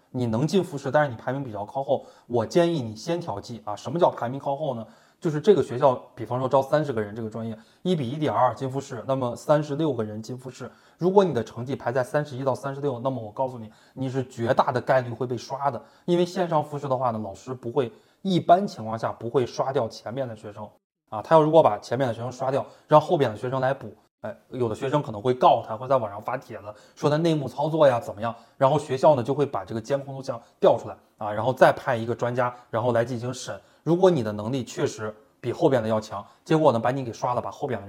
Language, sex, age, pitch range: Chinese, male, 20-39, 115-145 Hz